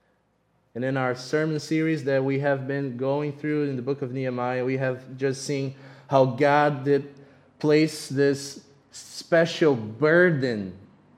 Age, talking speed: 20-39, 145 wpm